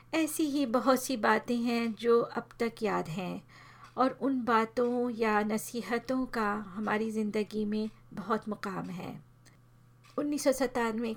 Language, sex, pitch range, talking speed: Hindi, female, 210-240 Hz, 130 wpm